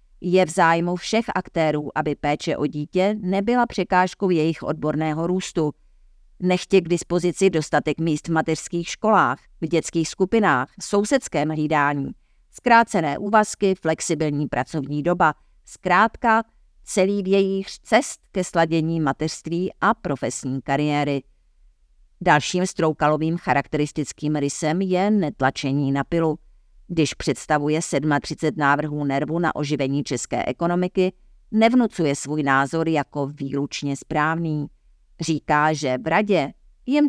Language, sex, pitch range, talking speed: Czech, female, 145-180 Hz, 115 wpm